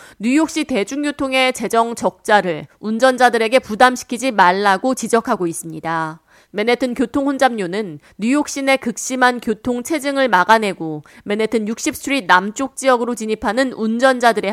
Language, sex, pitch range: Korean, female, 195-270 Hz